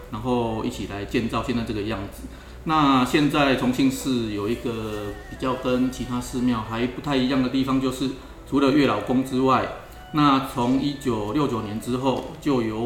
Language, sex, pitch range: Chinese, male, 110-130 Hz